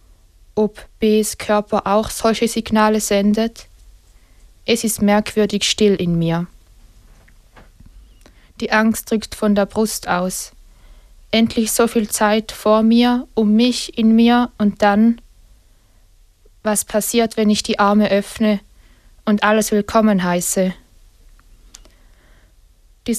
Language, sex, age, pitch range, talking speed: English, female, 20-39, 165-215 Hz, 115 wpm